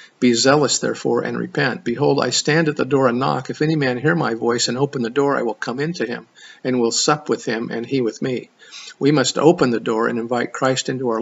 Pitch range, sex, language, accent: 120-140 Hz, male, English, American